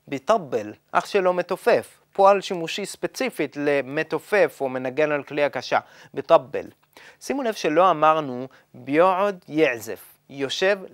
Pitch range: 145-220 Hz